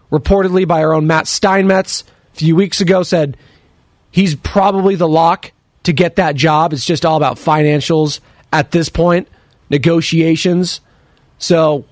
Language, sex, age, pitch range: English, male, 30-49, 140-185 Hz